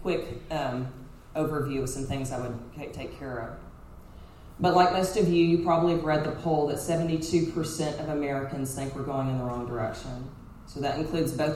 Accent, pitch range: American, 125-150 Hz